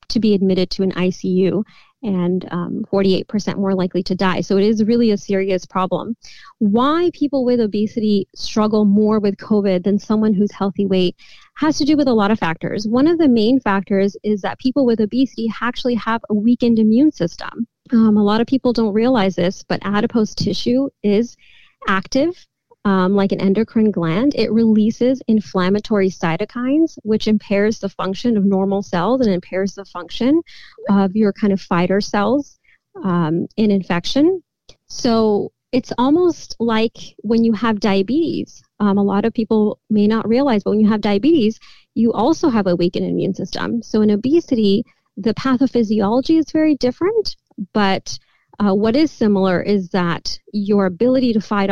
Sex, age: female, 20-39